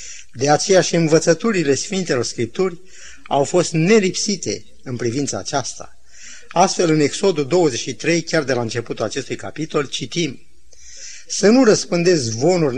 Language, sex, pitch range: Romanian, male, 135-190 Hz